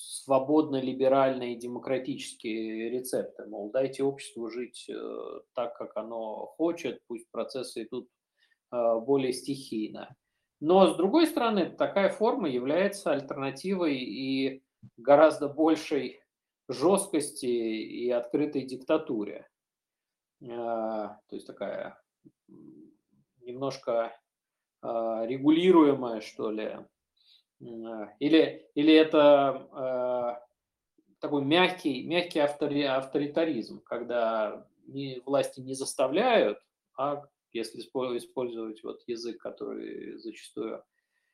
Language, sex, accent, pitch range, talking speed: Russian, male, native, 120-160 Hz, 85 wpm